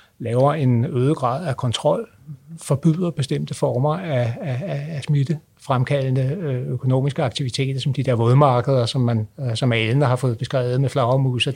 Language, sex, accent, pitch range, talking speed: Danish, male, native, 125-150 Hz, 150 wpm